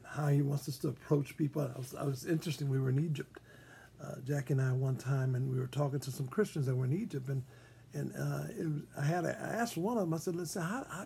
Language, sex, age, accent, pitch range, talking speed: English, male, 50-69, American, 130-185 Hz, 275 wpm